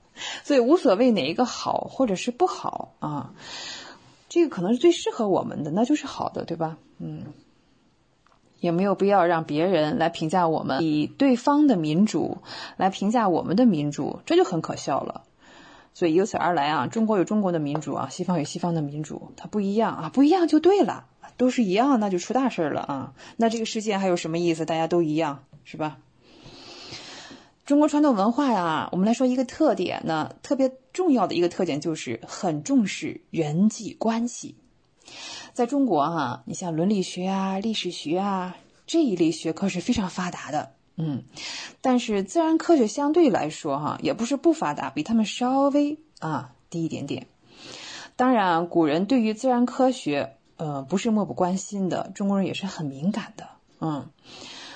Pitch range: 170-260 Hz